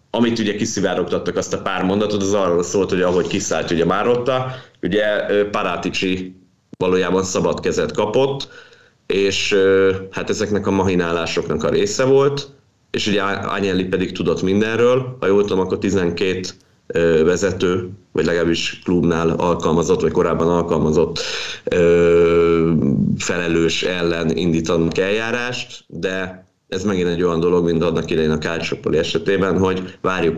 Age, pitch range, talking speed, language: 30-49, 85-100 Hz, 130 wpm, Hungarian